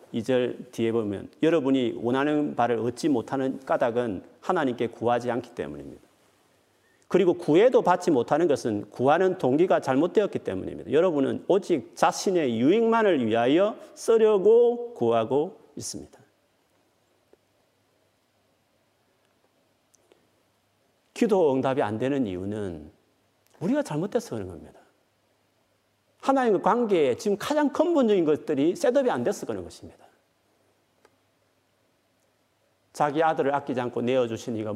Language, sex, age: Korean, male, 40-59